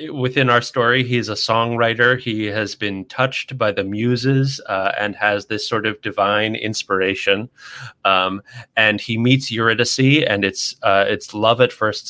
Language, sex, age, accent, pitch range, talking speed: English, male, 30-49, American, 100-125 Hz, 165 wpm